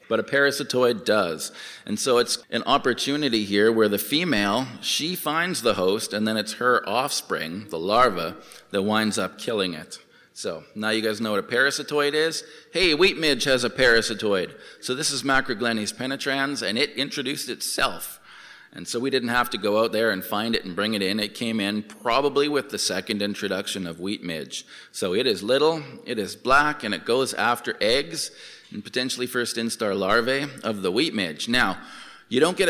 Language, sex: English, male